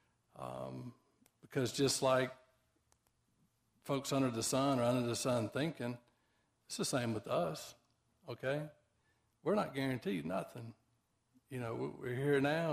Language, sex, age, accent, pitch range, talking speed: English, male, 50-69, American, 115-135 Hz, 130 wpm